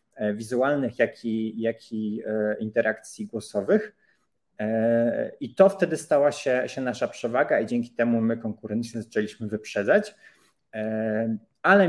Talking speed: 115 wpm